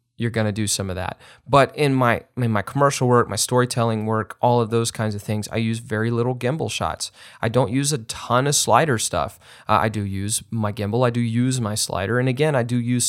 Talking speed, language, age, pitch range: 245 wpm, English, 30-49, 110-125 Hz